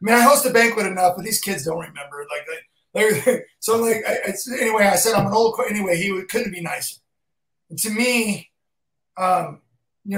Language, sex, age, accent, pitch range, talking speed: English, male, 30-49, American, 170-240 Hz, 210 wpm